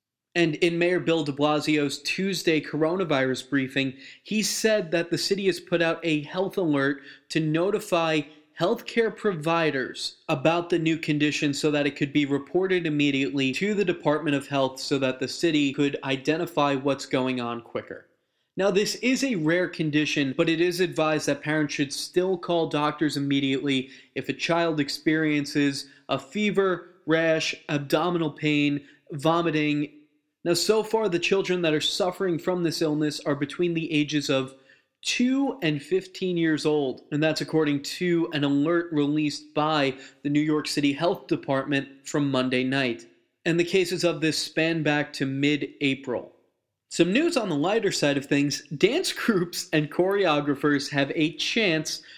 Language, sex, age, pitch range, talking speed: English, male, 20-39, 145-170 Hz, 160 wpm